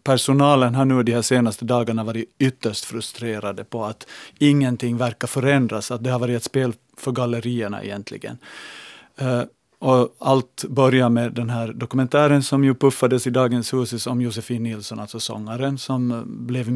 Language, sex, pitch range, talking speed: Swedish, male, 120-130 Hz, 160 wpm